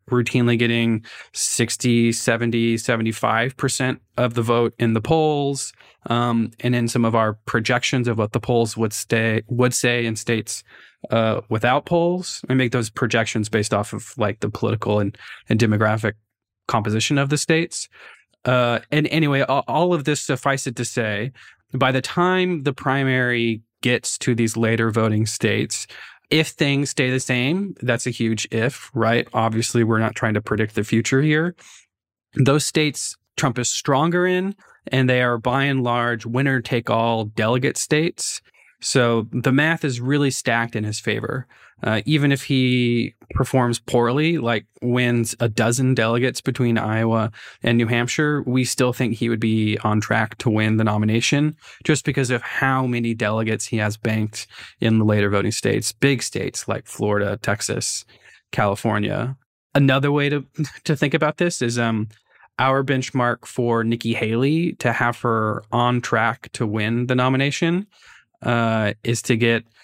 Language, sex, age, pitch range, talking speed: English, male, 20-39, 115-135 Hz, 160 wpm